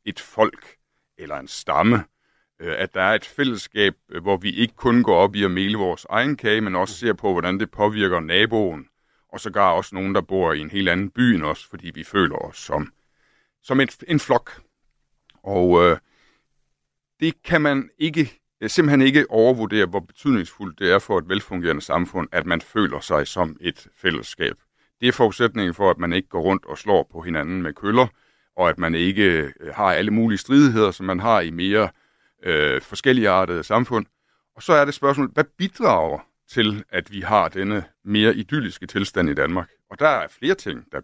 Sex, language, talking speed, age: male, Danish, 190 wpm, 60-79